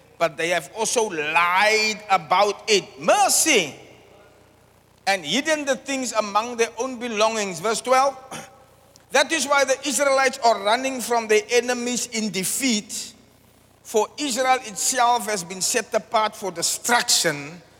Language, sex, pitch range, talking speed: English, male, 175-250 Hz, 130 wpm